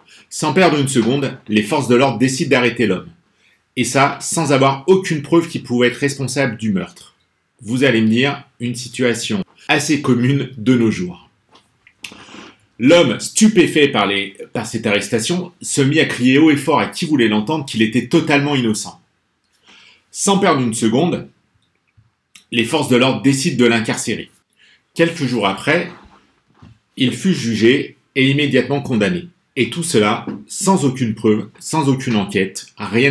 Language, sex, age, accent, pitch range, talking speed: French, male, 40-59, French, 110-145 Hz, 155 wpm